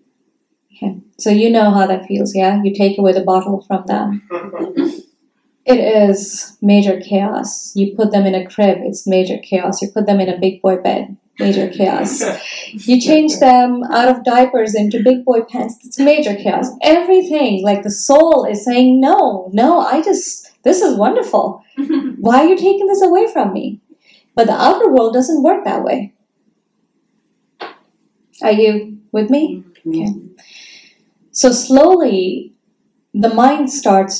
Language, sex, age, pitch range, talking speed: English, female, 20-39, 200-260 Hz, 155 wpm